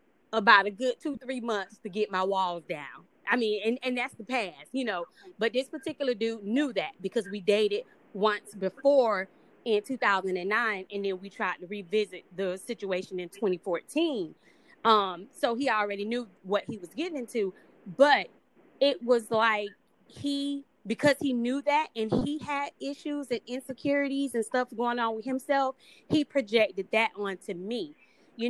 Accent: American